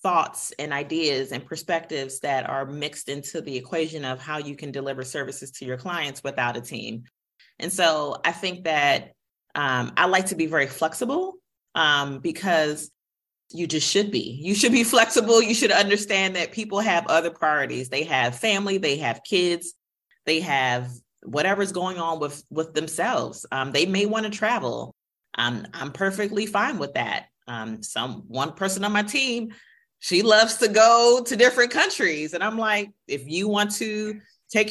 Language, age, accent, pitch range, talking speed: English, 30-49, American, 150-220 Hz, 175 wpm